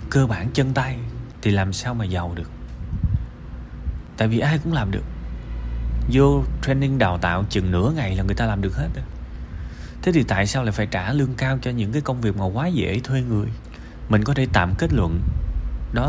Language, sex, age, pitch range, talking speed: Vietnamese, male, 20-39, 85-120 Hz, 205 wpm